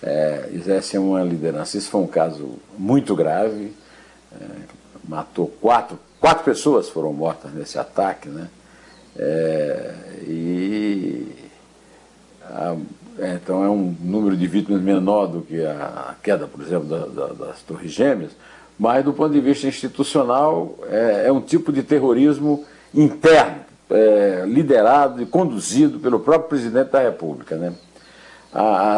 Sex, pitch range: male, 90-115 Hz